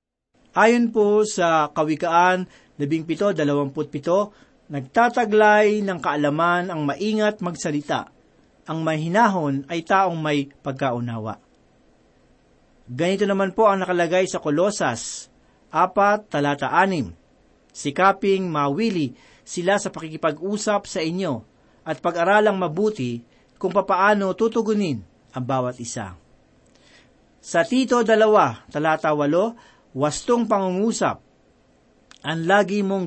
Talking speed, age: 90 wpm, 40-59